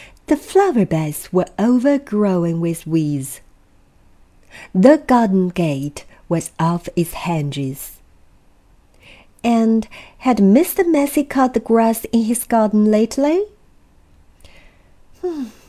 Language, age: Chinese, 50-69